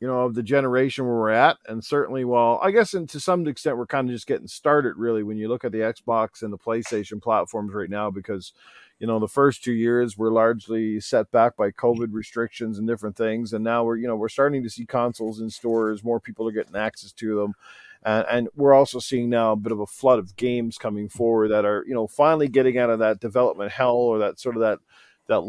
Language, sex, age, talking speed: English, male, 40-59, 245 wpm